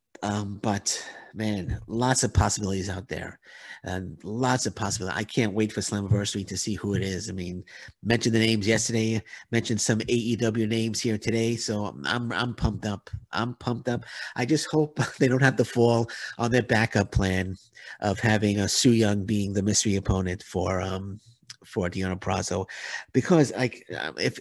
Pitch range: 100-120 Hz